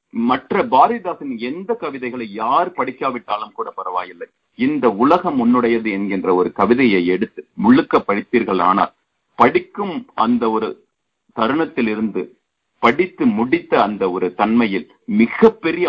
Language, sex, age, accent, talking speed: Tamil, male, 40-59, native, 110 wpm